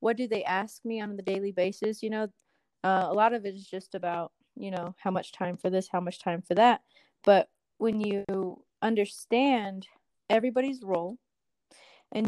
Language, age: English, 20-39